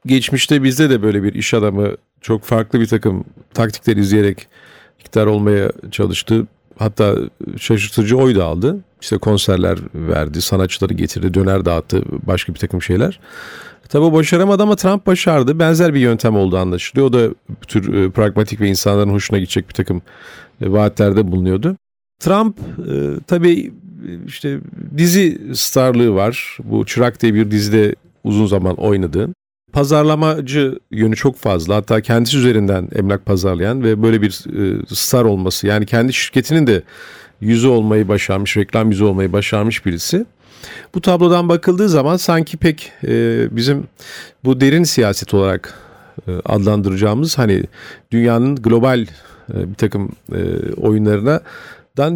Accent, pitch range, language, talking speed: native, 100-140 Hz, Turkish, 130 wpm